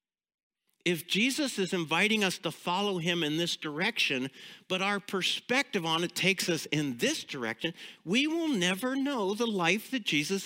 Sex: male